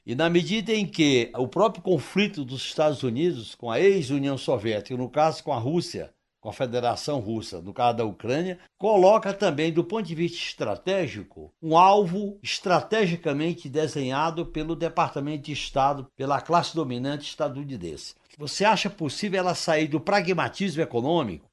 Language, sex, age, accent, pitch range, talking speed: Portuguese, male, 60-79, Brazilian, 140-175 Hz, 155 wpm